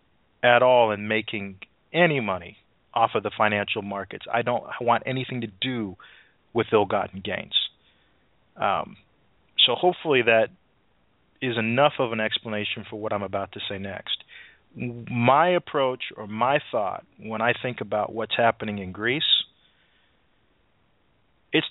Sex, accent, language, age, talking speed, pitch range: male, American, English, 40-59, 140 wpm, 110-135 Hz